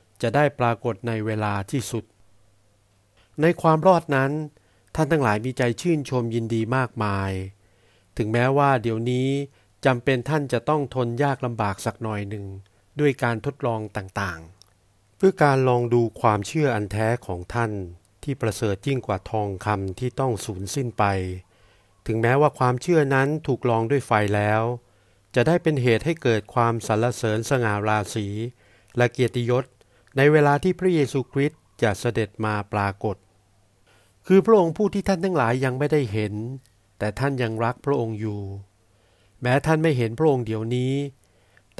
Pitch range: 105-135 Hz